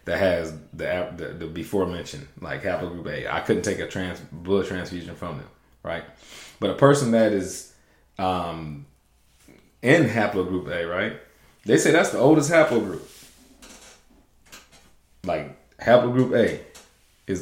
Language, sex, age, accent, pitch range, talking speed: English, male, 30-49, American, 80-100 Hz, 140 wpm